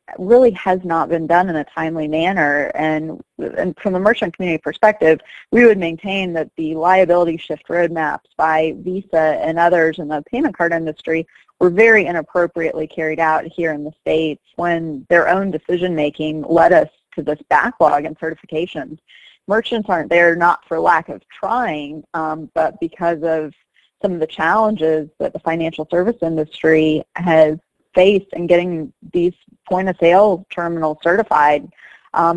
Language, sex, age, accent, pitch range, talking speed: English, female, 30-49, American, 155-185 Hz, 150 wpm